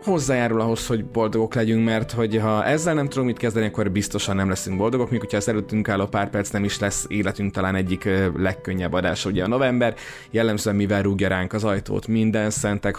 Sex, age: male, 20-39